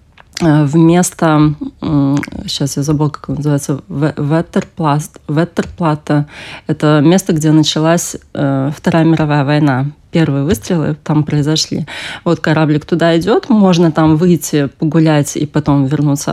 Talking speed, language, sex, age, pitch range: 110 wpm, Russian, female, 20-39, 150-170 Hz